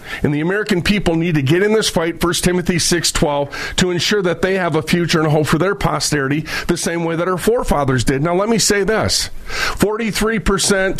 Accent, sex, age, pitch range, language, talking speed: American, male, 40-59, 150-205 Hz, English, 215 wpm